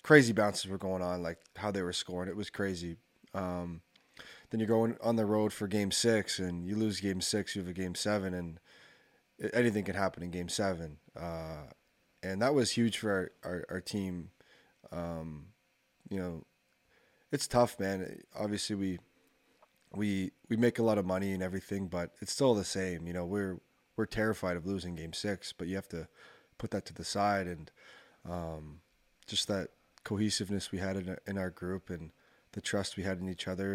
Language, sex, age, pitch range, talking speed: English, male, 20-39, 85-100 Hz, 195 wpm